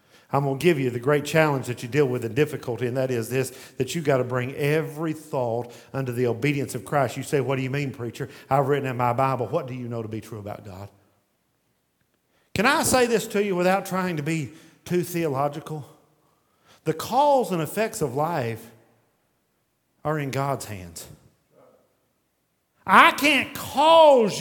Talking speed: 185 wpm